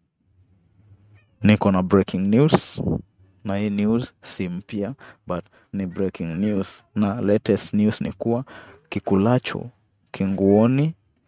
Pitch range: 95-115 Hz